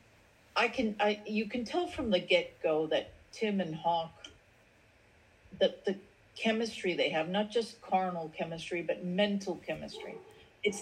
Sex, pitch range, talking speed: female, 165-210 Hz, 145 wpm